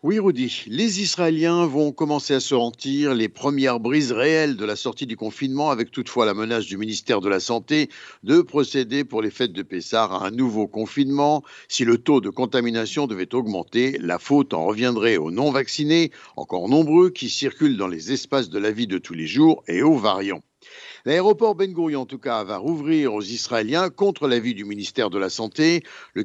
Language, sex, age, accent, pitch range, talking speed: Italian, male, 60-79, French, 120-165 Hz, 195 wpm